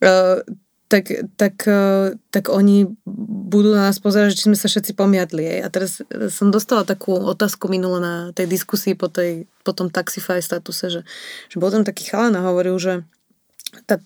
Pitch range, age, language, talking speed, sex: 185-215 Hz, 20-39, Slovak, 180 wpm, female